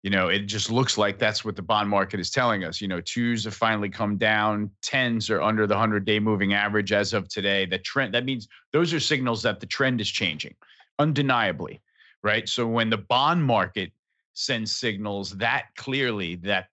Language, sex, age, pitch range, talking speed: English, male, 40-59, 105-125 Hz, 200 wpm